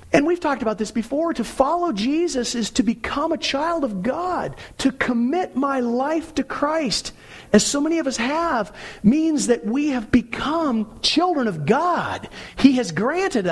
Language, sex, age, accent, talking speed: English, male, 50-69, American, 175 wpm